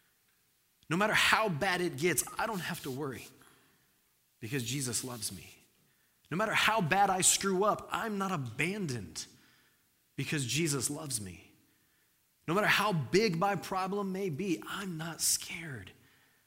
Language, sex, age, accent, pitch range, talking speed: English, male, 30-49, American, 110-150 Hz, 145 wpm